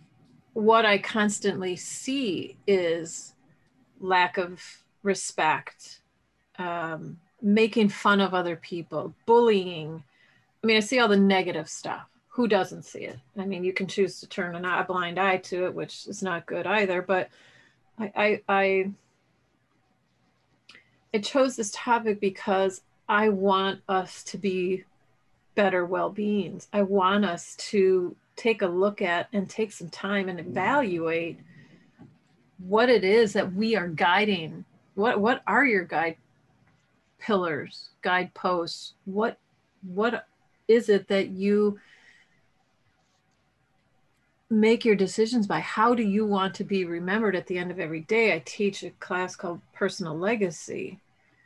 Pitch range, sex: 180-210 Hz, female